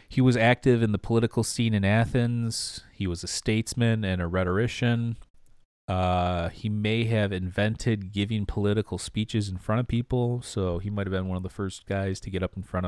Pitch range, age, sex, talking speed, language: 90-110 Hz, 30-49, male, 200 wpm, English